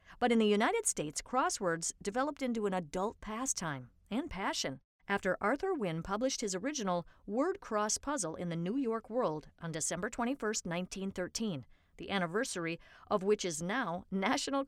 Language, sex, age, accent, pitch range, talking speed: English, female, 50-69, American, 185-260 Hz, 155 wpm